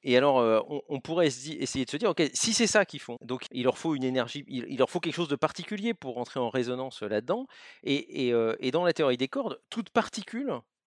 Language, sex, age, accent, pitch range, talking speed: French, male, 40-59, French, 120-165 Hz, 230 wpm